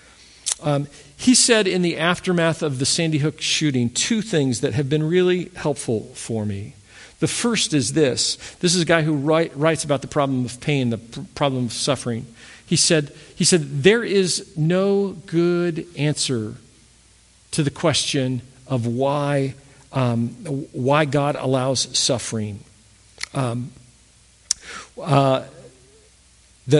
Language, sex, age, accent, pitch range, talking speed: English, male, 50-69, American, 130-170 Hz, 140 wpm